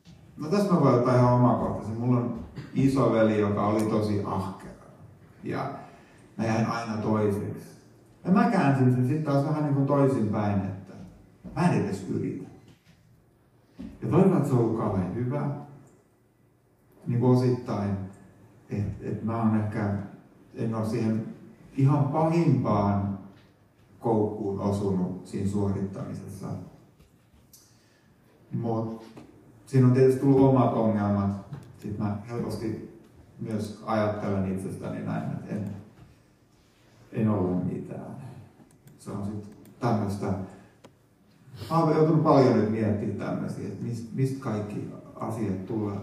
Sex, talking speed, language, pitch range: male, 115 wpm, Finnish, 100-130 Hz